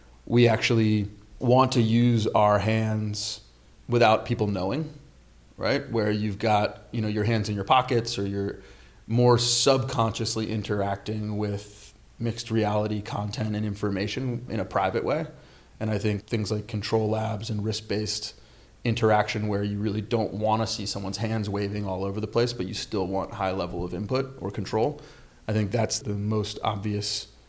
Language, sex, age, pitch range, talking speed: English, male, 30-49, 105-115 Hz, 165 wpm